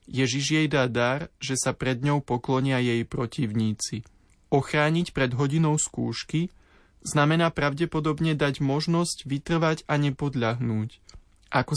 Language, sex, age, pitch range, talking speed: Slovak, male, 20-39, 120-140 Hz, 115 wpm